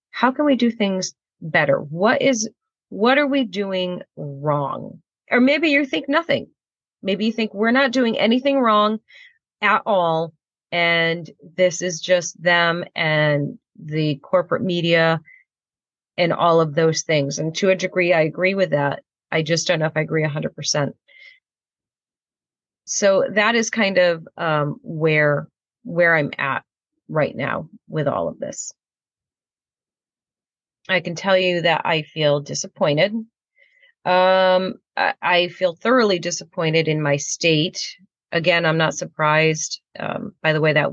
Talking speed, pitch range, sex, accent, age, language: 145 wpm, 160-210 Hz, female, American, 30-49, English